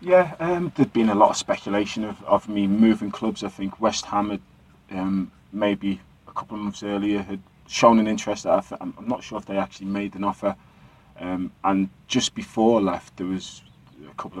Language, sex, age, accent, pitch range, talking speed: English, male, 20-39, British, 95-105 Hz, 205 wpm